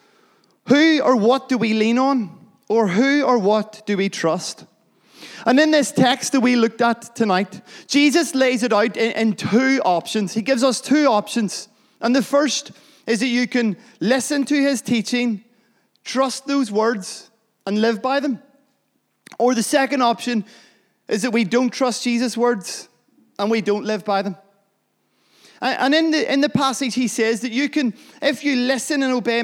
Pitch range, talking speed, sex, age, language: 210-265 Hz, 175 wpm, male, 20-39, English